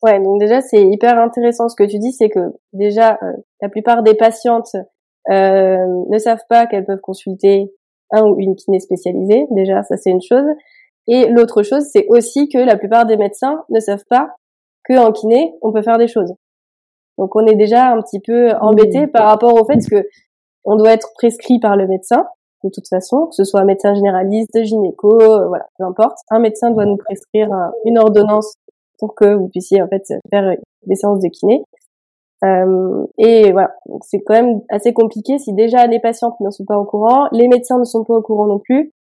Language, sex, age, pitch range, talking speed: French, female, 20-39, 200-235 Hz, 205 wpm